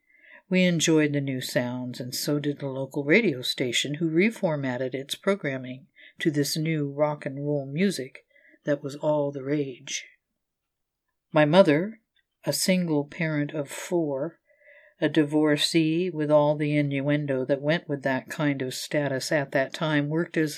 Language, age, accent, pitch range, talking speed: English, 60-79, American, 140-175 Hz, 155 wpm